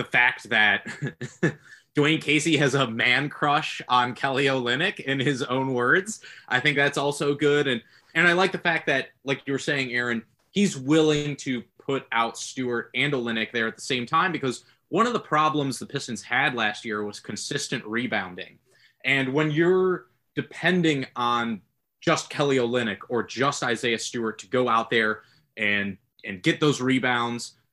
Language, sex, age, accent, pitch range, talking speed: English, male, 20-39, American, 115-150 Hz, 175 wpm